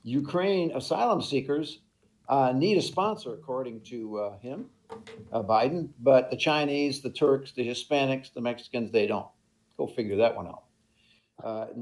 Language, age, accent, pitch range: English, 60-79, American, 120-150 Hz